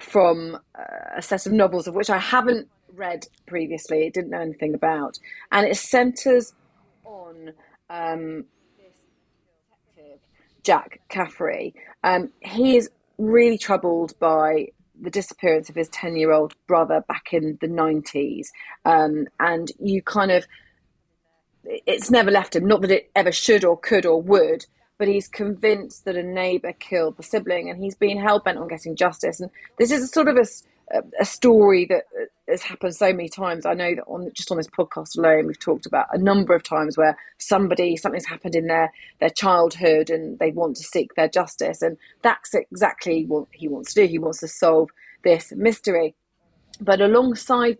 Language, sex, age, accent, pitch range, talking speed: English, female, 30-49, British, 165-205 Hz, 175 wpm